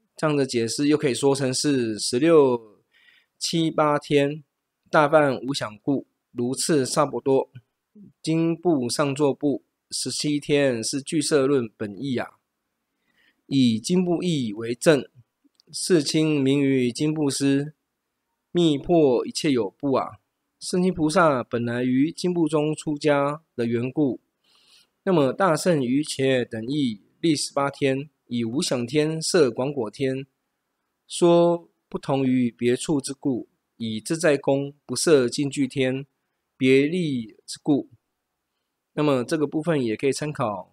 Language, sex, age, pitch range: Chinese, male, 20-39, 125-155 Hz